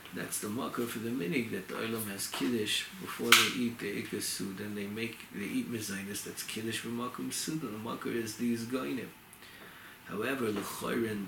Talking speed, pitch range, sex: 190 wpm, 105-130 Hz, male